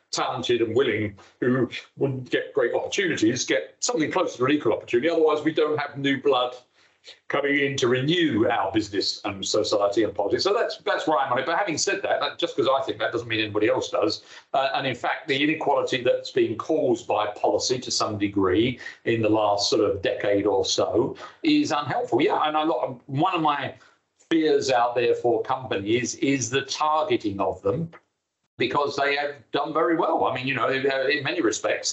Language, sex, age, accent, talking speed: English, male, 50-69, British, 205 wpm